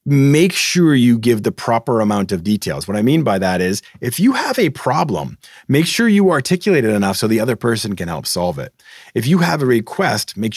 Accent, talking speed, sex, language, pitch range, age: American, 225 wpm, male, English, 100-130 Hz, 30-49